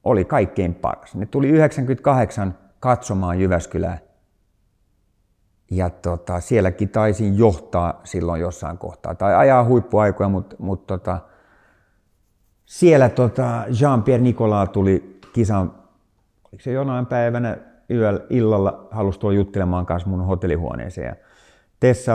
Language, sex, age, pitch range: Finnish, male, 50-69, 90-120 Hz